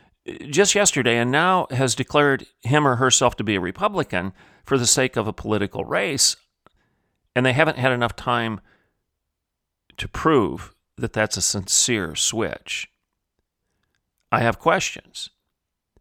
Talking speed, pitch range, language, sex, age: 135 wpm, 95-130 Hz, English, male, 40-59